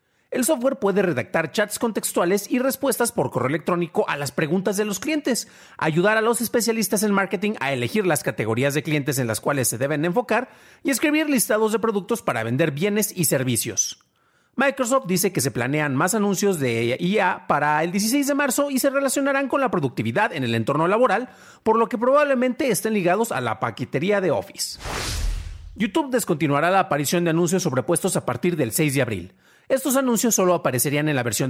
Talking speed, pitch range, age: 190 wpm, 150-225 Hz, 40-59